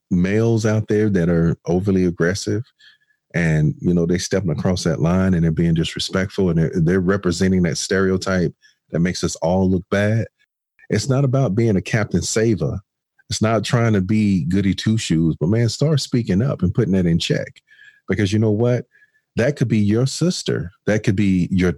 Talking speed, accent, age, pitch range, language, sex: 190 wpm, American, 40-59, 90-130 Hz, English, male